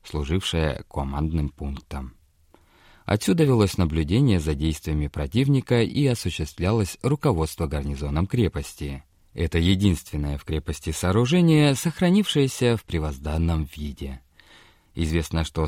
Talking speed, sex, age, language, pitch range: 95 wpm, male, 30-49, Russian, 75-115 Hz